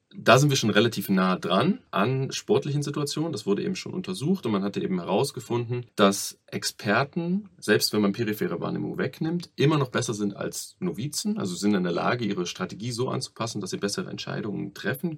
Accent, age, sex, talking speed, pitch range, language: German, 30-49, male, 190 wpm, 105-170 Hz, German